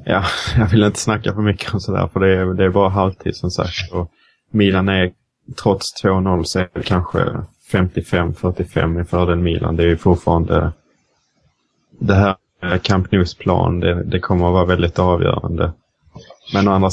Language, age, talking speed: Swedish, 20-39, 170 wpm